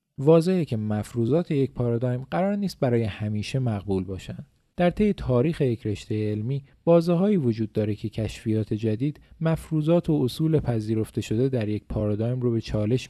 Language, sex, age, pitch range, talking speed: Persian, male, 40-59, 110-145 Hz, 155 wpm